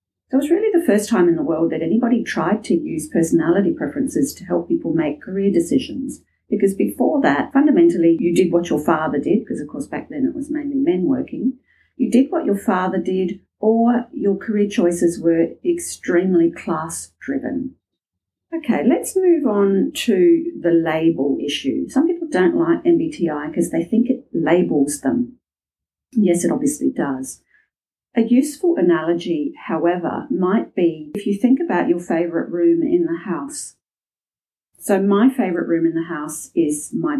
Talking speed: 165 wpm